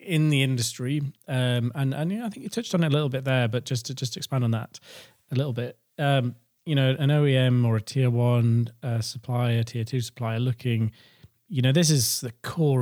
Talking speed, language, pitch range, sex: 230 wpm, English, 115-140 Hz, male